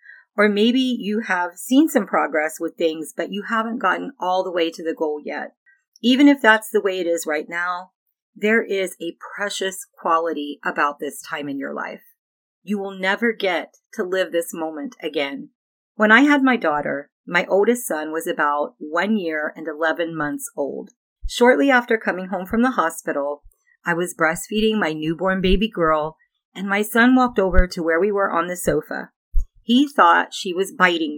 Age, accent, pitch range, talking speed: 40-59, American, 165-235 Hz, 185 wpm